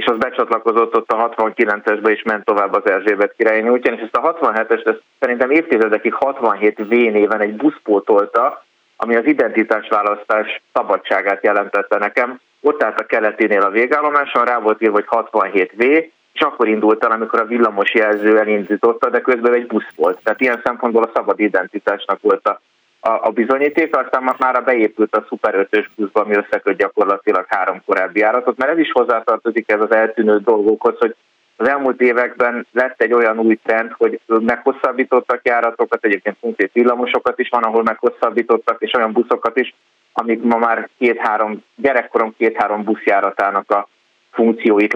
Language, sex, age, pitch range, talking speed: Hungarian, male, 30-49, 105-120 Hz, 155 wpm